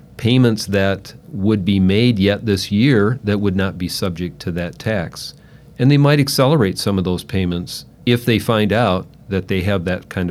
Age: 40-59